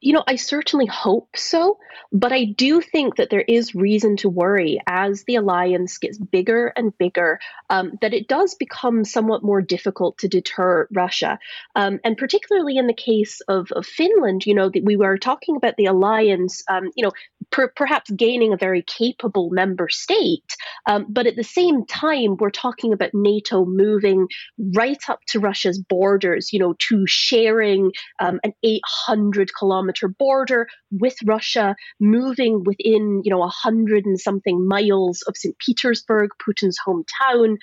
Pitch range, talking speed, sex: 195-255 Hz, 165 wpm, female